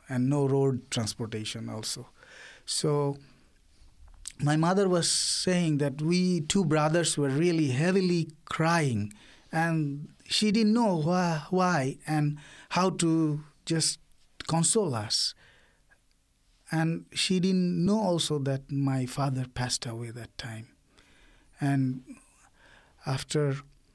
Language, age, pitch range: English, 50-69, 130-160 Hz